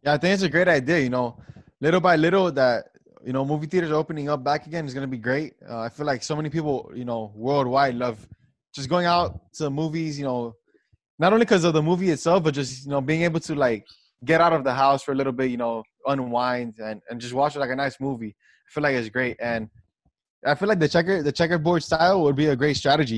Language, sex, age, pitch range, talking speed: English, male, 20-39, 130-165 Hz, 255 wpm